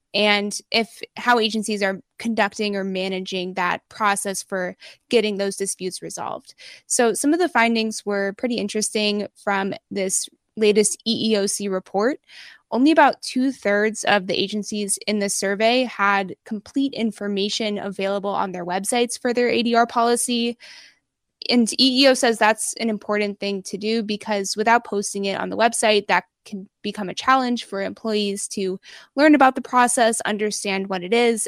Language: English